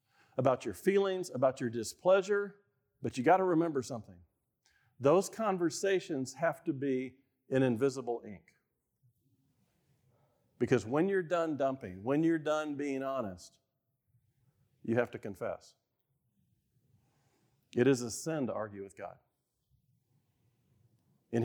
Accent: American